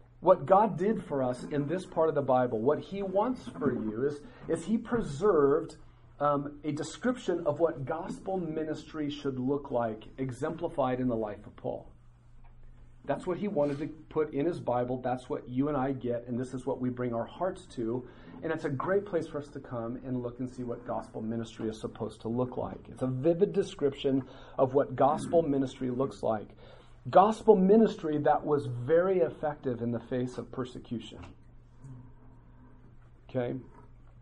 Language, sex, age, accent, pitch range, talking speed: English, male, 40-59, American, 120-150 Hz, 180 wpm